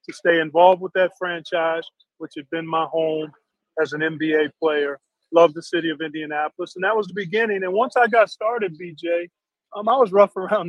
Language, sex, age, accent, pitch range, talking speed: English, male, 40-59, American, 155-185 Hz, 200 wpm